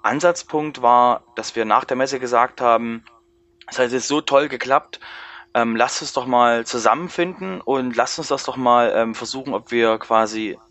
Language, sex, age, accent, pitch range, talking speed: German, male, 20-39, German, 115-135 Hz, 180 wpm